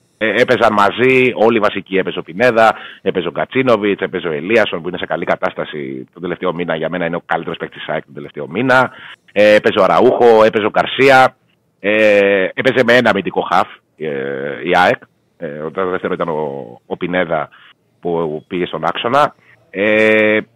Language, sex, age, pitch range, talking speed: Greek, male, 30-49, 100-130 Hz, 145 wpm